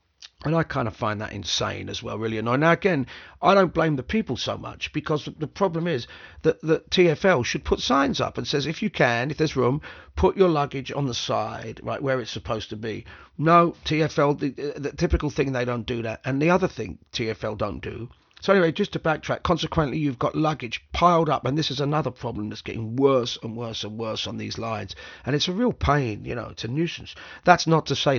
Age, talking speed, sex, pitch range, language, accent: 40-59, 230 wpm, male, 110-155 Hz, English, British